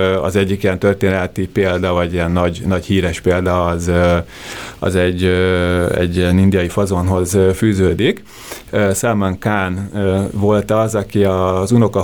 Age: 30-49